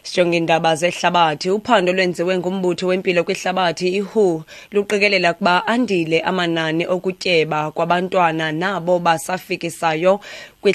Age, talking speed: 30-49, 130 wpm